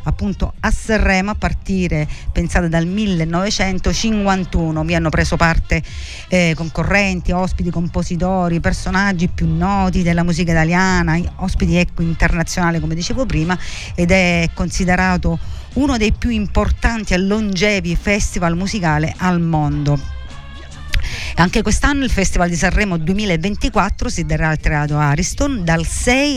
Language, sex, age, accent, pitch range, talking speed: Italian, female, 50-69, native, 160-190 Hz, 125 wpm